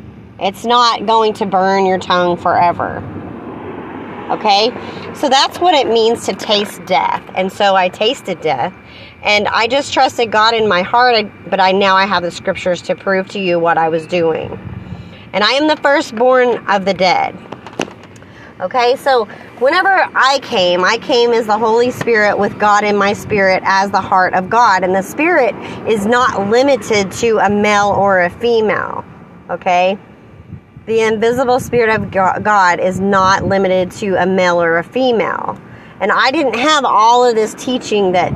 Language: English